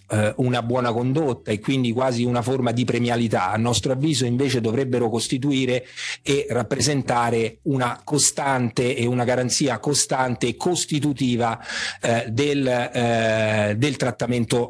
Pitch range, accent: 115-145 Hz, native